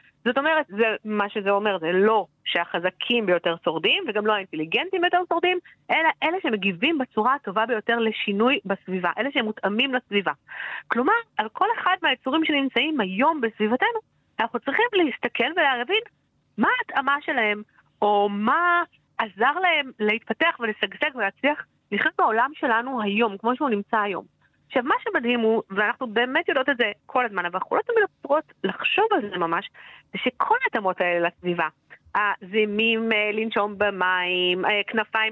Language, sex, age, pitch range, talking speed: Hebrew, female, 40-59, 210-300 Hz, 140 wpm